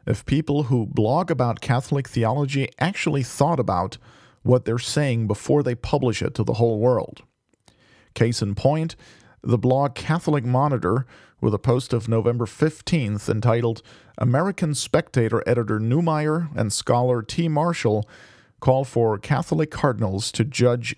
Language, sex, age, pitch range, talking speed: English, male, 40-59, 110-140 Hz, 140 wpm